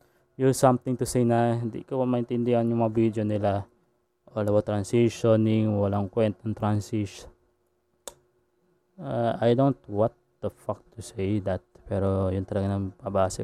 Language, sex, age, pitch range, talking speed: Filipino, male, 20-39, 110-135 Hz, 145 wpm